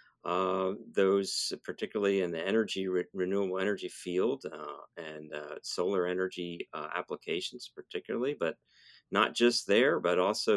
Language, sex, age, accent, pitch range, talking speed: English, male, 50-69, American, 90-110 Hz, 135 wpm